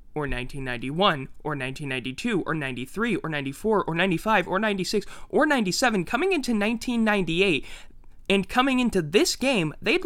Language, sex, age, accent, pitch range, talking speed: English, male, 20-39, American, 150-200 Hz, 135 wpm